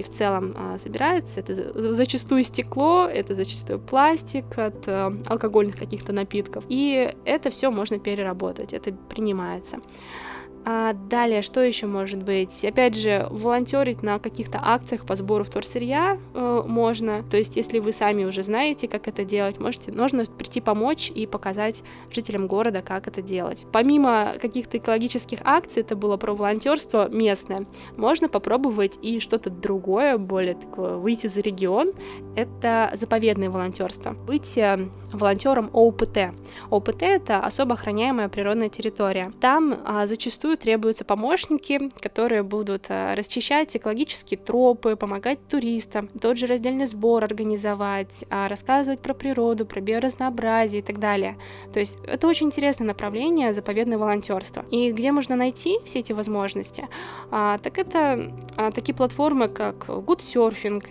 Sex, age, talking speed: female, 20-39, 135 wpm